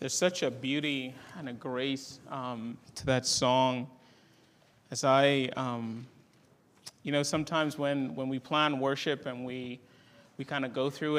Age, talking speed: 30-49, 155 wpm